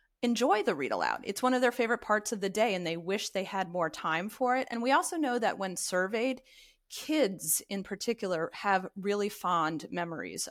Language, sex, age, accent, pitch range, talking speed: English, female, 30-49, American, 180-230 Hz, 205 wpm